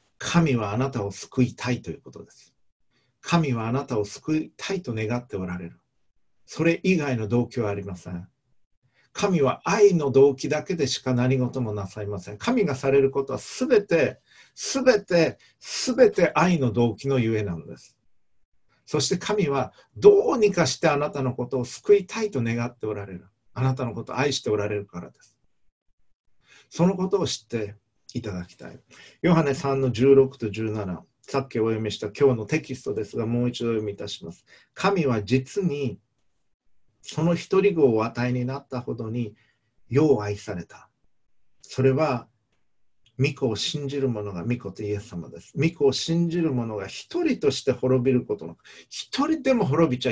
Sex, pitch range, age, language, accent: male, 110-155 Hz, 50-69, Japanese, native